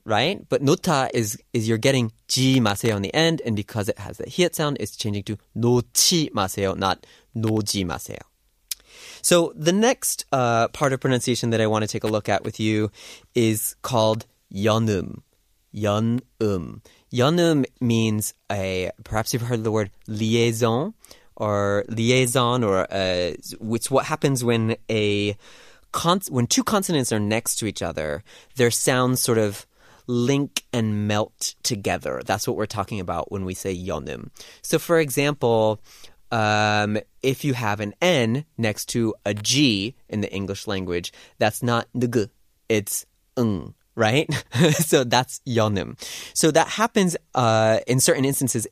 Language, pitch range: Korean, 105-130 Hz